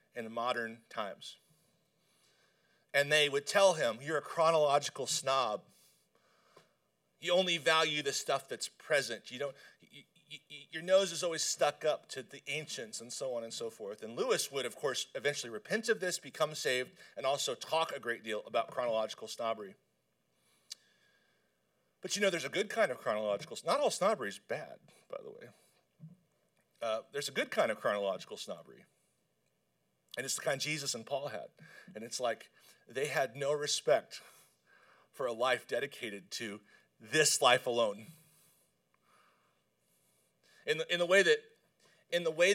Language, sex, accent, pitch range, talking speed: English, male, American, 135-175 Hz, 160 wpm